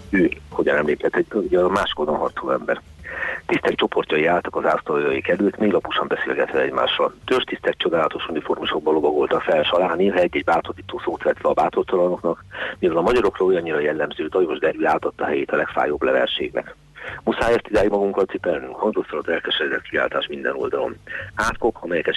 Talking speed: 150 wpm